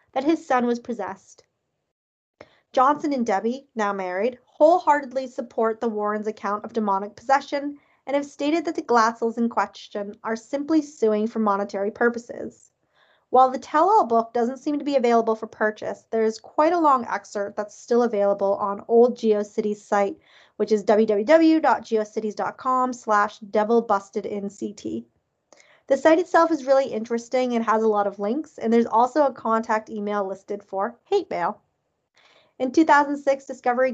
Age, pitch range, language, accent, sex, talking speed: 20-39, 210-265 Hz, English, American, female, 150 wpm